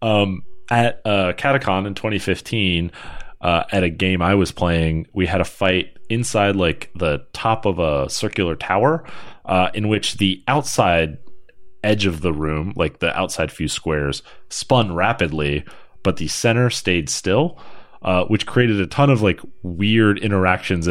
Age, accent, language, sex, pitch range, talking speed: 30-49, American, English, male, 90-120 Hz, 160 wpm